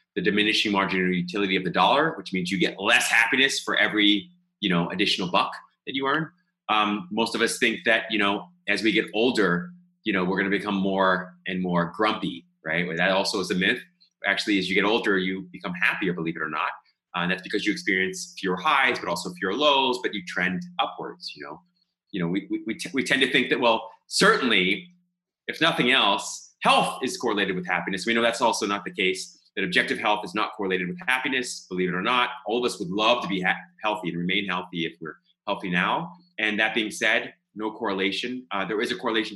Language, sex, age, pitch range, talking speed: English, male, 30-49, 95-130 Hz, 225 wpm